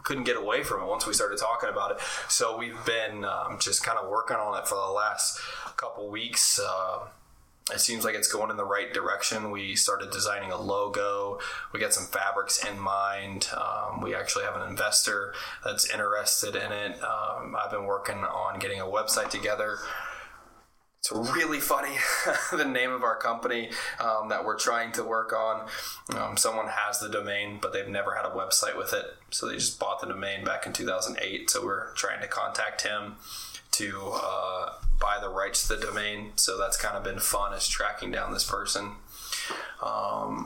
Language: English